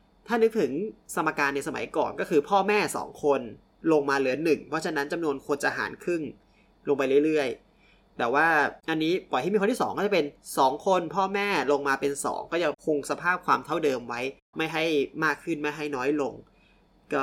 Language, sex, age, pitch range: Thai, male, 20-39, 140-195 Hz